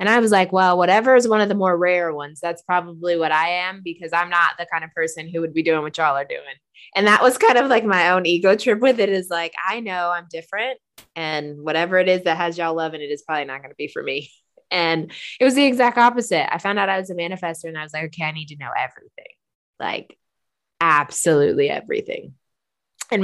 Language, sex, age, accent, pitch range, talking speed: English, female, 20-39, American, 160-200 Hz, 250 wpm